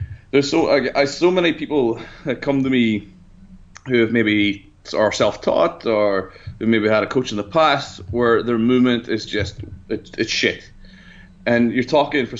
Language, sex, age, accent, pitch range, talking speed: English, male, 20-39, Irish, 105-125 Hz, 175 wpm